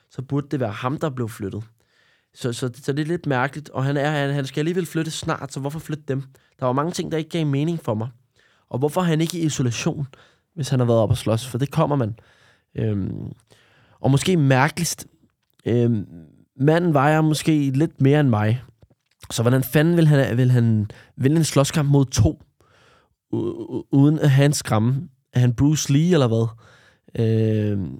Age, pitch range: 20-39, 120-150 Hz